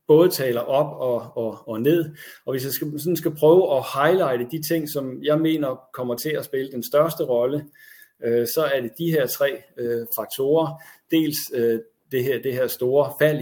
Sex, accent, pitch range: male, native, 120-155 Hz